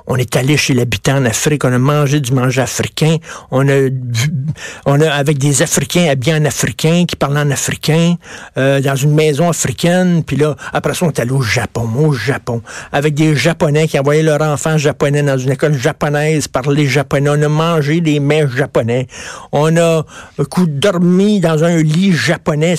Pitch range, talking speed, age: 140-170 Hz, 190 wpm, 60-79